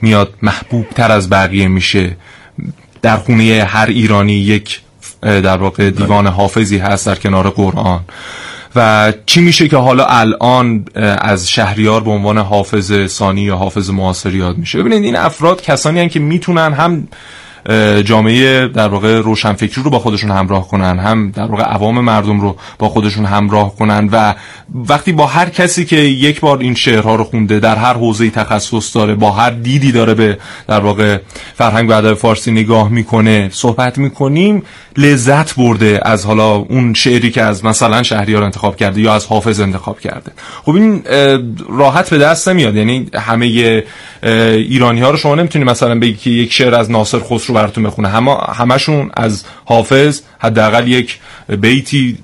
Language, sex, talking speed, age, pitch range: Persian, male, 155 wpm, 30-49, 105-125 Hz